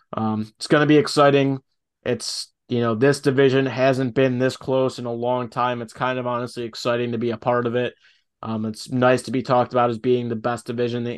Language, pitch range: English, 115-130 Hz